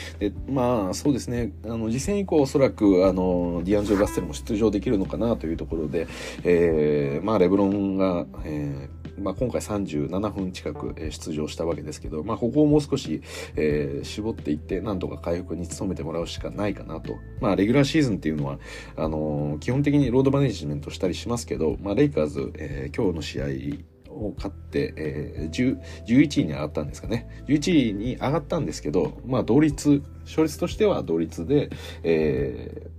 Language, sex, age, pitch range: Japanese, male, 40-59, 75-110 Hz